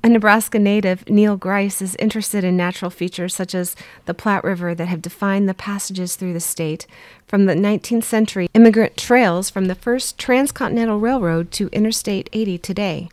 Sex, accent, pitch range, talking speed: female, American, 175-210 Hz, 175 wpm